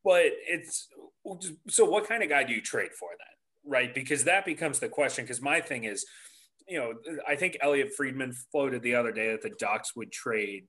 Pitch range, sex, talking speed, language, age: 125-170 Hz, male, 210 wpm, English, 30-49